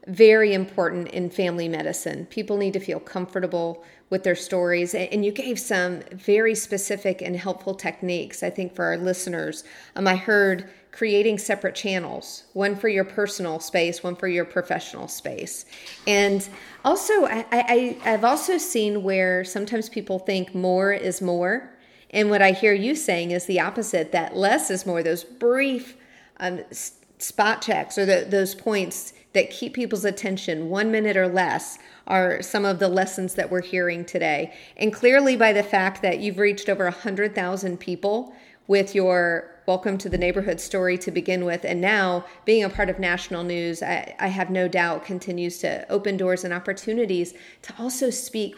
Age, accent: 40-59, American